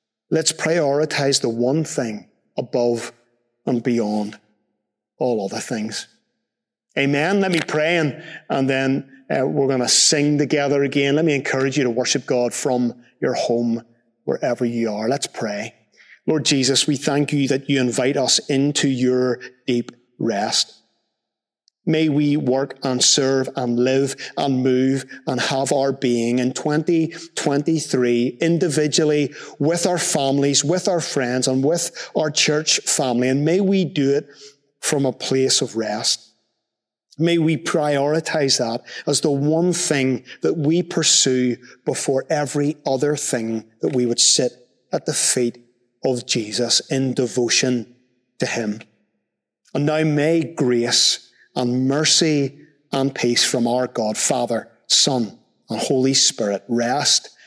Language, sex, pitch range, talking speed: English, male, 125-150 Hz, 140 wpm